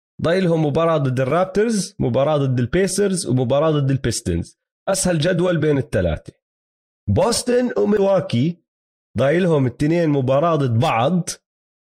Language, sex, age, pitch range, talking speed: Arabic, male, 30-49, 125-175 Hz, 110 wpm